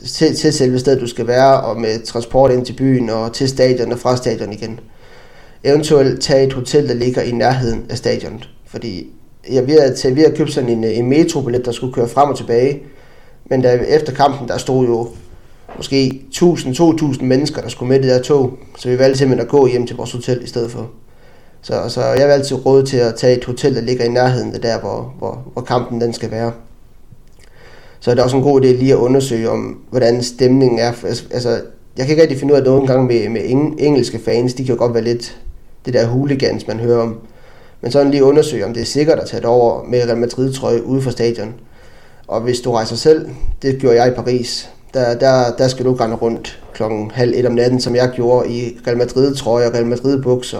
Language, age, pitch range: Danish, 20-39, 120-135 Hz